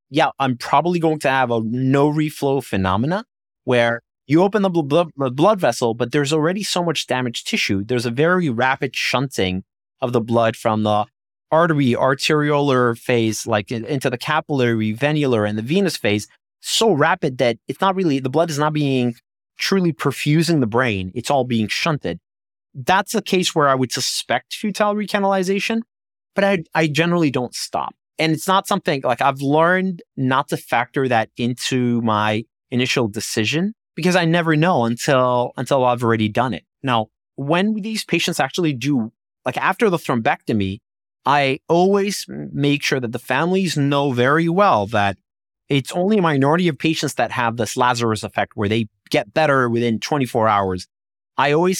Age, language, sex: 30-49, English, male